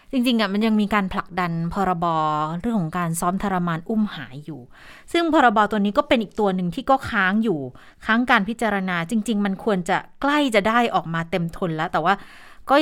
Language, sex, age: Thai, female, 20-39